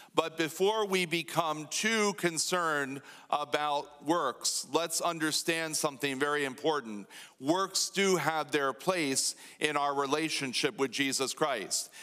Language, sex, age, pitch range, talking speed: English, male, 40-59, 150-170 Hz, 120 wpm